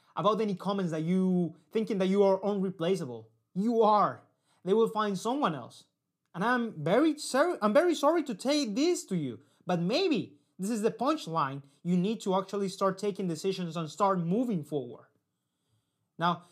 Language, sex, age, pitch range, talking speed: English, male, 30-49, 155-200 Hz, 170 wpm